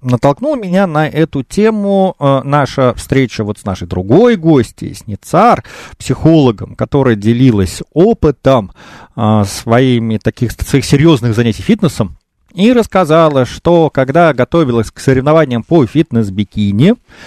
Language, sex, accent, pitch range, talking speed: Russian, male, native, 125-210 Hz, 120 wpm